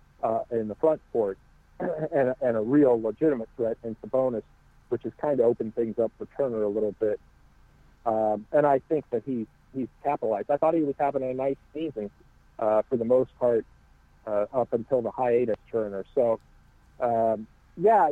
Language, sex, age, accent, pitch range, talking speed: English, male, 40-59, American, 115-150 Hz, 180 wpm